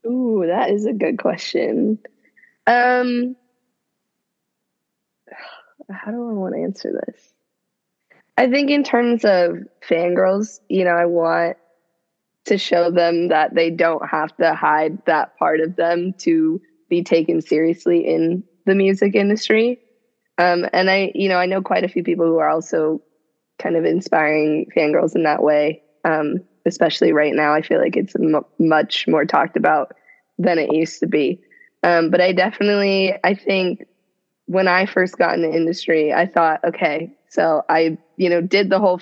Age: 20-39